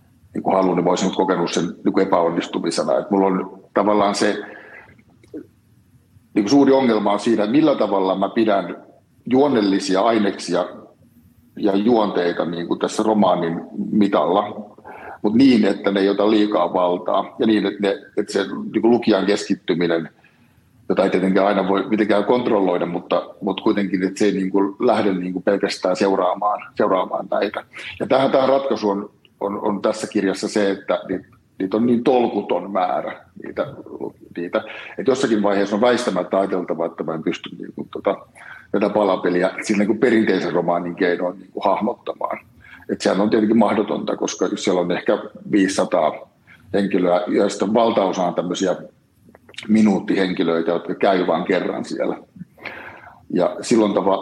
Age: 60-79